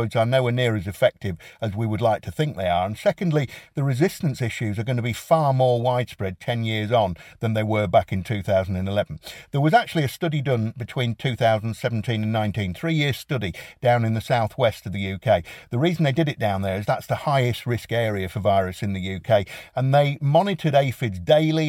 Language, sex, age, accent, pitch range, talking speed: English, male, 50-69, British, 110-145 Hz, 215 wpm